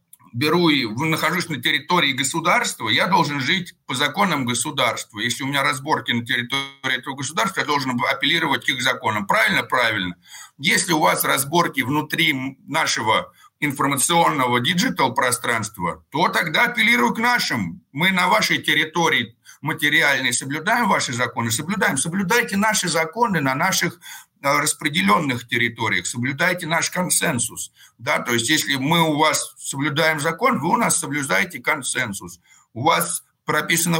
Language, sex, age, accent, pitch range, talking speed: Russian, male, 60-79, native, 120-165 Hz, 140 wpm